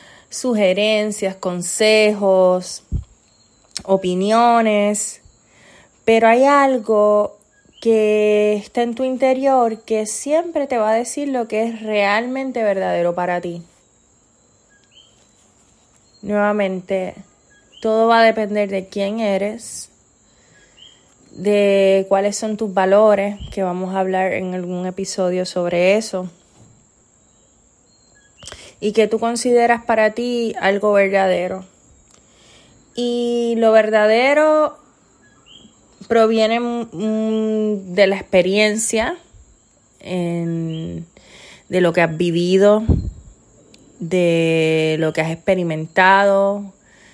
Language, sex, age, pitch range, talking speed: Spanish, female, 20-39, 175-220 Hz, 90 wpm